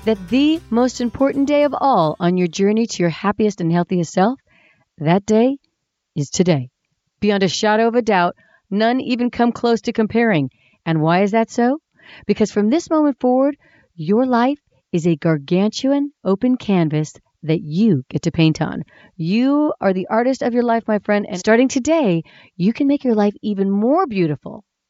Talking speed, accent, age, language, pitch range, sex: 180 wpm, American, 40-59, English, 170-245 Hz, female